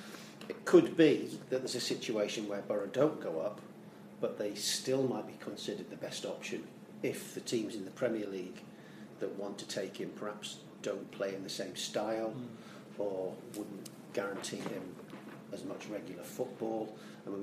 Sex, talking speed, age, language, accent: male, 170 wpm, 40-59, English, British